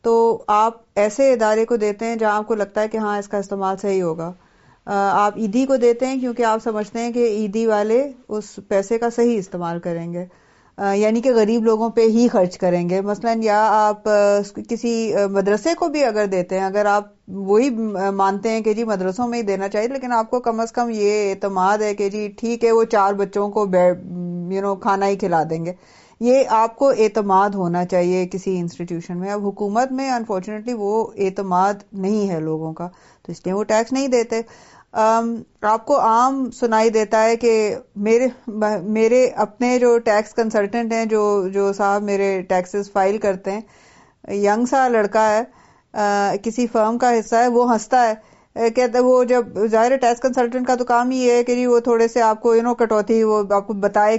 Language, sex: Urdu, female